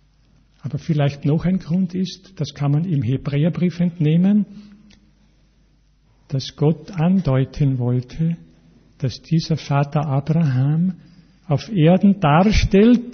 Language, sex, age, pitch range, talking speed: German, male, 50-69, 135-165 Hz, 105 wpm